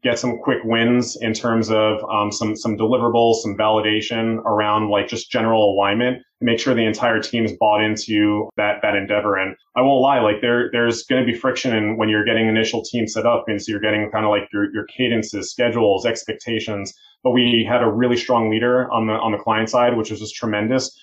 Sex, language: male, English